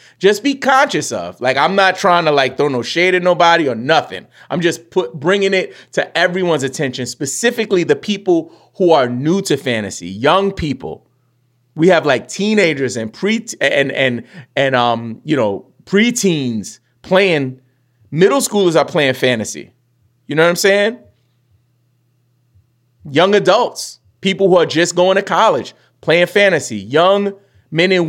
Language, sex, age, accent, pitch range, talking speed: English, male, 30-49, American, 125-185 Hz, 155 wpm